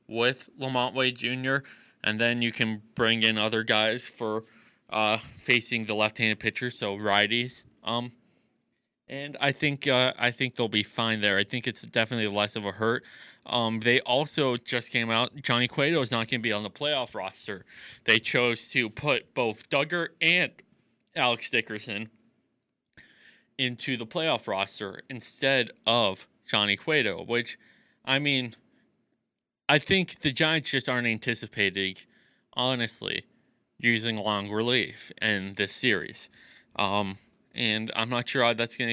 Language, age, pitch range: English, 20-39, 110-130 Hz